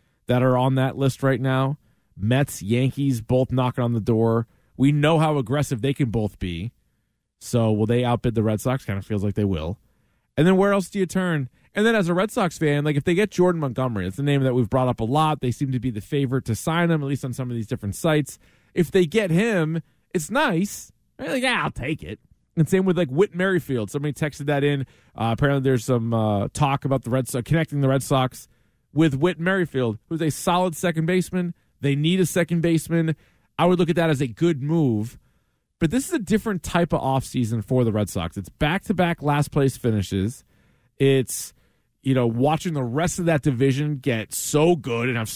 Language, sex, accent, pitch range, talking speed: English, male, American, 120-165 Hz, 225 wpm